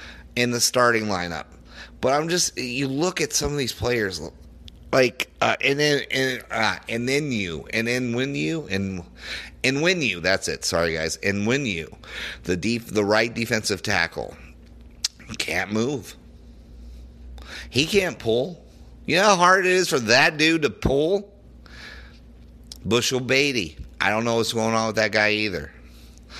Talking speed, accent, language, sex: 165 wpm, American, English, male